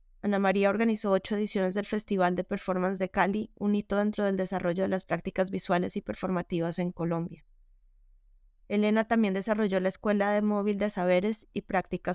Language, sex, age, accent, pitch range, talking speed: English, female, 20-39, Colombian, 185-205 Hz, 175 wpm